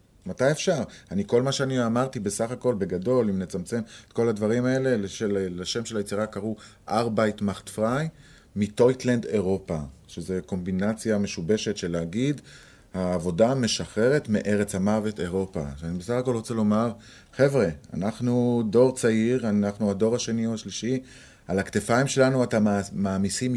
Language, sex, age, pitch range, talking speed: Hebrew, male, 30-49, 100-135 Hz, 135 wpm